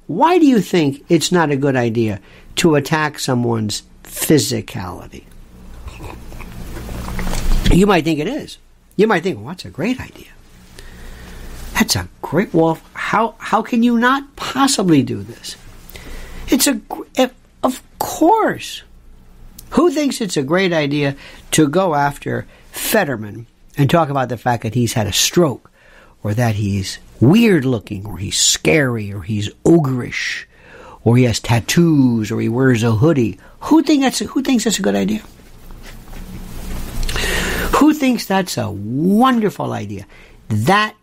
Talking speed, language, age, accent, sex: 145 wpm, English, 60-79, American, male